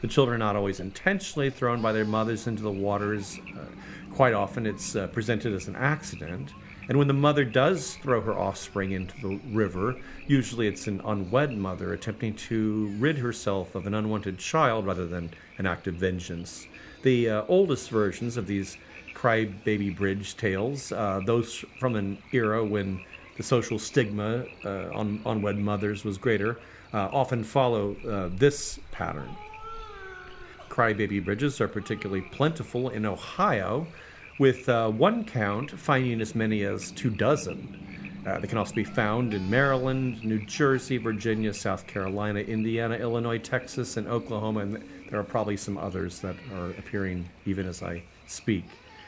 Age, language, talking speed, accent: 40-59, English, 160 wpm, American